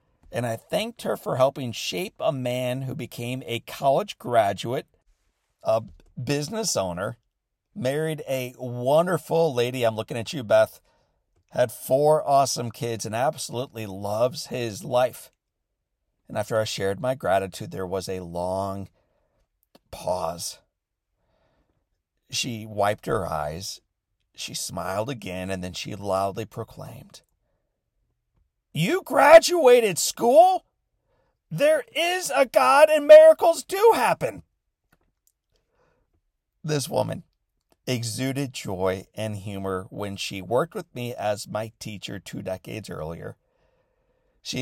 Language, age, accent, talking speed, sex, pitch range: English, 50-69, American, 115 wpm, male, 100-145 Hz